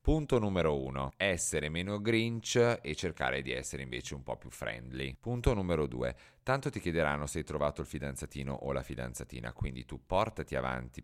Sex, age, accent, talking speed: male, 30-49, native, 180 wpm